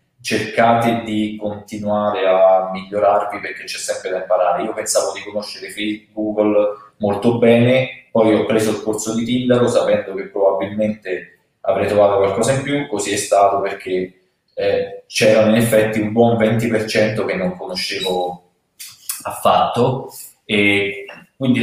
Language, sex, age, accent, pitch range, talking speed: Italian, male, 20-39, native, 100-120 Hz, 140 wpm